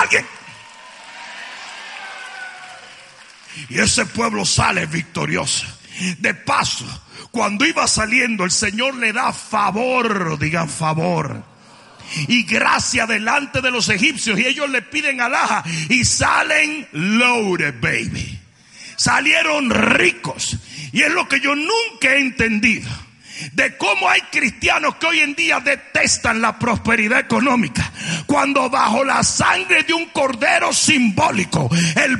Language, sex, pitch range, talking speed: Spanish, male, 175-285 Hz, 115 wpm